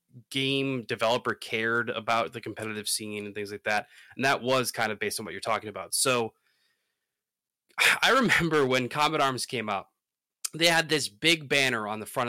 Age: 20-39